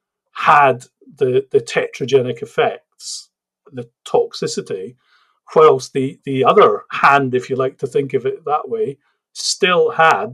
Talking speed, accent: 135 wpm, British